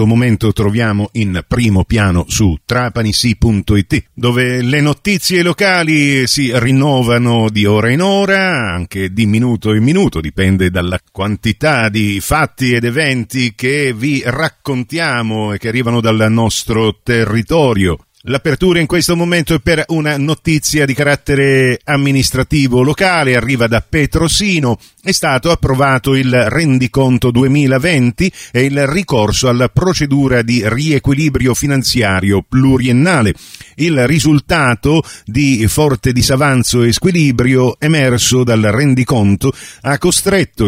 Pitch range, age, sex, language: 105-140 Hz, 50-69, male, Italian